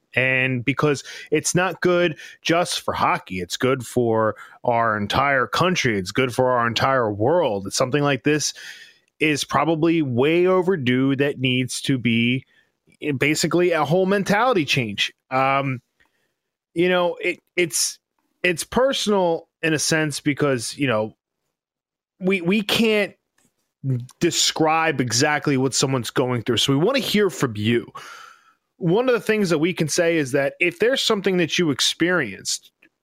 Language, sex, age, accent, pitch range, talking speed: English, male, 20-39, American, 130-180 Hz, 145 wpm